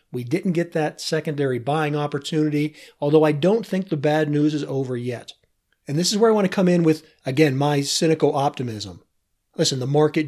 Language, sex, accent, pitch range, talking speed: English, male, American, 135-160 Hz, 200 wpm